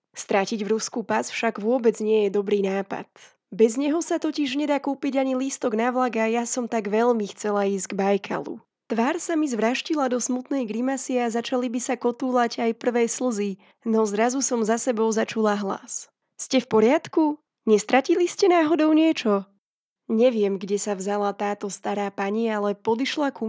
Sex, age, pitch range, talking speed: female, 20-39, 205-255 Hz, 175 wpm